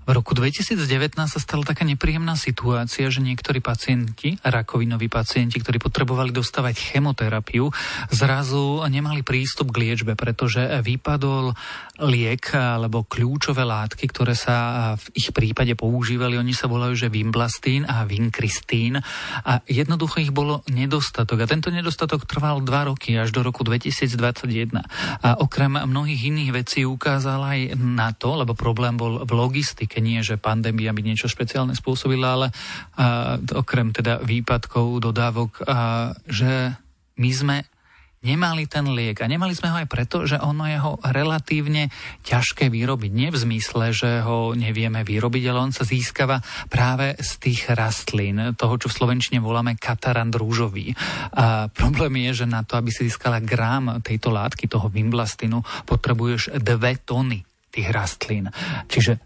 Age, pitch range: 30-49, 115-135 Hz